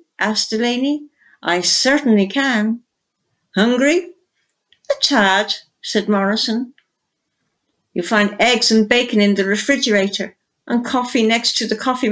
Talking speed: 120 wpm